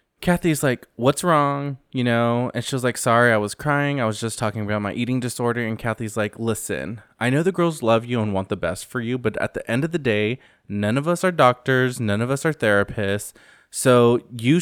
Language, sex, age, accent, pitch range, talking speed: English, male, 20-39, American, 105-130 Hz, 235 wpm